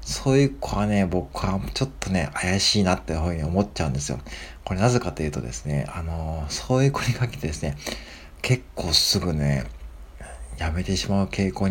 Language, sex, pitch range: Japanese, male, 75-110 Hz